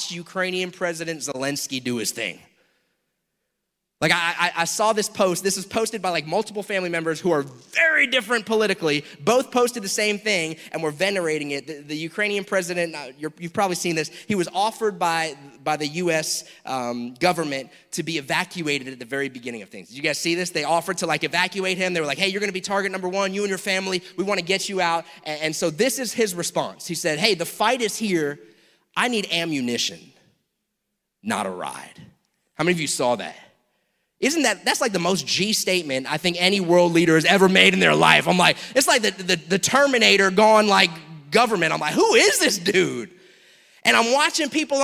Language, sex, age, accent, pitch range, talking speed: English, male, 30-49, American, 165-220 Hz, 210 wpm